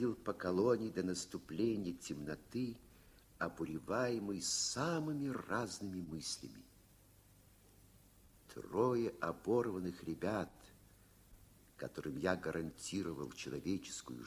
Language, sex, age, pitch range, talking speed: Russian, male, 50-69, 95-120 Hz, 65 wpm